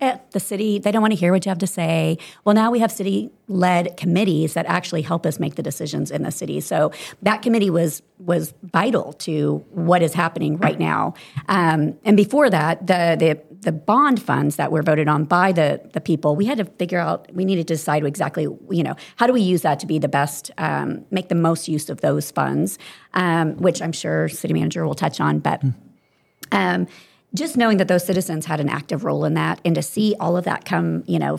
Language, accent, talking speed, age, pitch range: English, American, 225 wpm, 40-59, 150-185 Hz